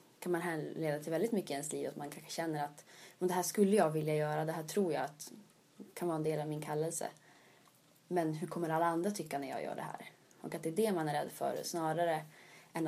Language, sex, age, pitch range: Swedish, female, 20-39, 155-175 Hz